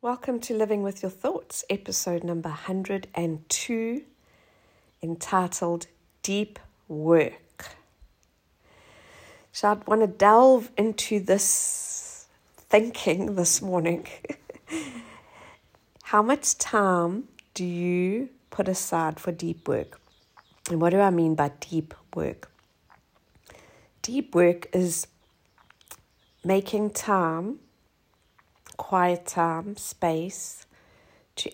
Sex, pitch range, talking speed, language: female, 170-200 Hz, 95 wpm, English